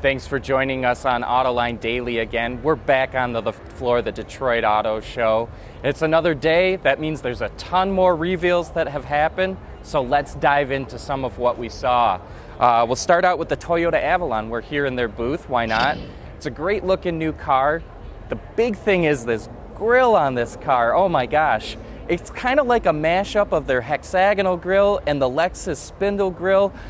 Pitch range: 120-170 Hz